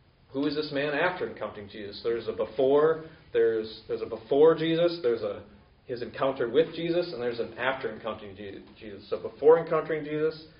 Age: 30-49